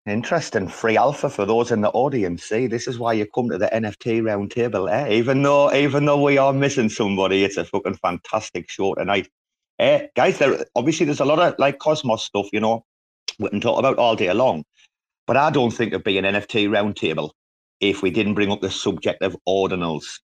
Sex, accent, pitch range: male, British, 95-135 Hz